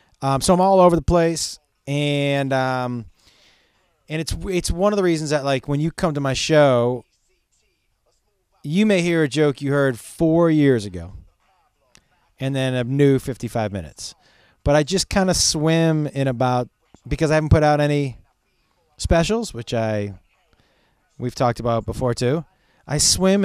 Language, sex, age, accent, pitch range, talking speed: English, male, 30-49, American, 120-165 Hz, 165 wpm